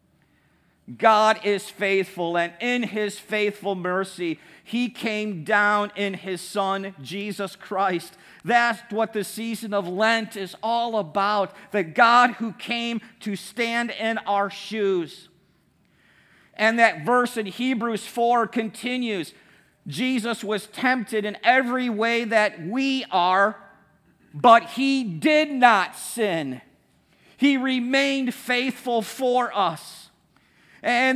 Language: English